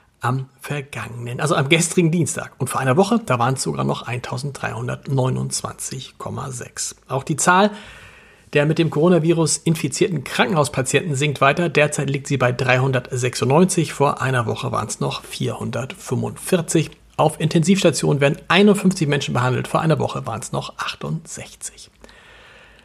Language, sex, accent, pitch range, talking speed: German, male, German, 135-185 Hz, 135 wpm